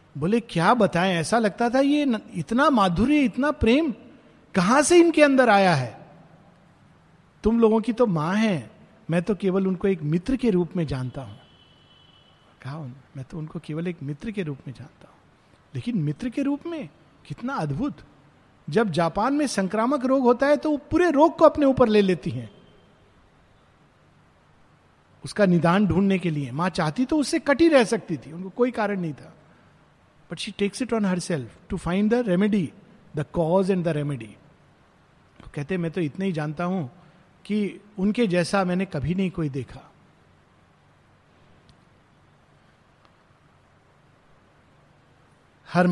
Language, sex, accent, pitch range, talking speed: Hindi, male, native, 165-235 Hz, 155 wpm